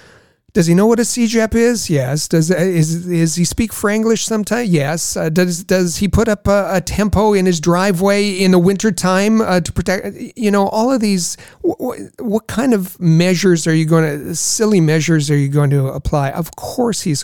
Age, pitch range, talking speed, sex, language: 40-59, 145-200 Hz, 205 wpm, male, English